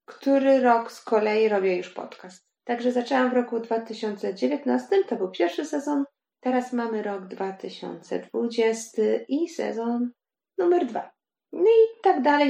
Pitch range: 220-275 Hz